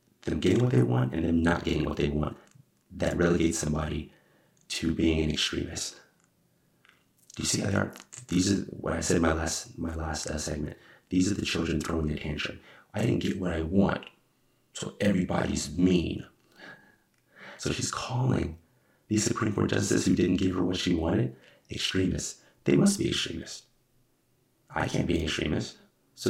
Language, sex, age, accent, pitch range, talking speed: English, male, 30-49, American, 75-90 Hz, 180 wpm